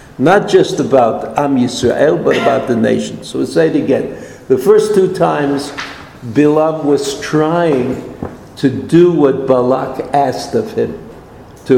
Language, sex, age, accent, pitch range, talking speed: English, male, 60-79, American, 135-180 Hz, 150 wpm